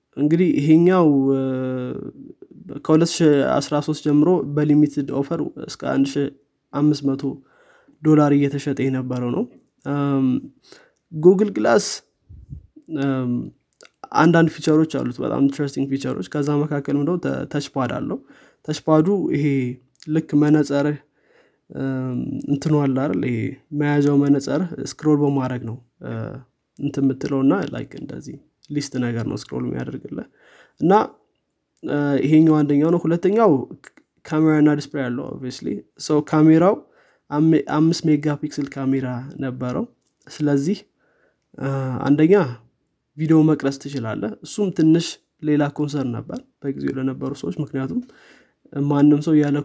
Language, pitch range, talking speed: Amharic, 135-155 Hz, 90 wpm